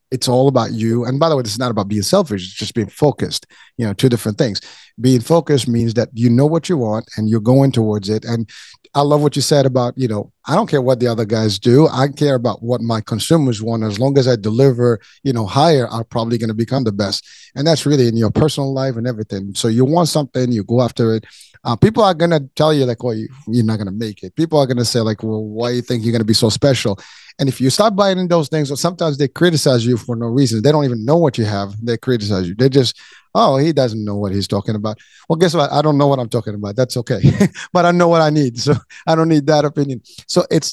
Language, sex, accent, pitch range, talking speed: English, male, American, 115-145 Hz, 275 wpm